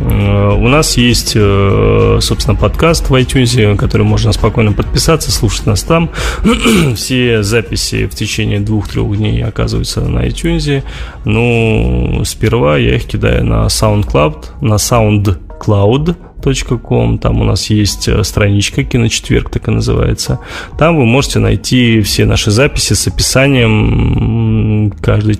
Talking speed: 125 wpm